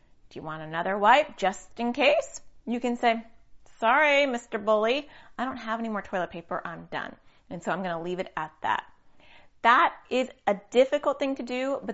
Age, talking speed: 30-49, 195 wpm